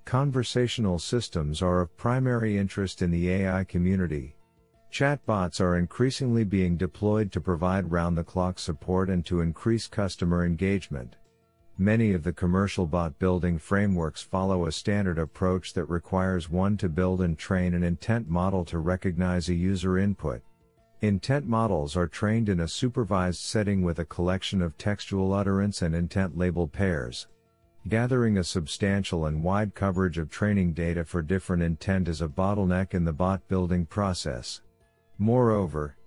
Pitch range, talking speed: 85-100 Hz, 145 wpm